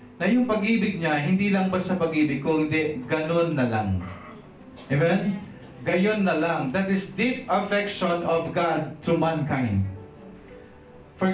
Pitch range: 125-185 Hz